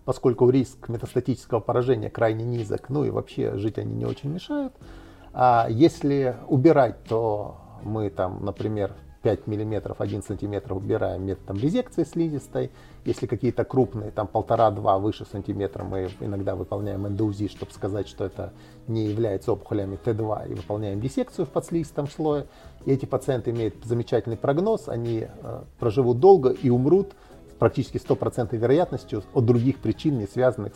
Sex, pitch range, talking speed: male, 105-130 Hz, 145 wpm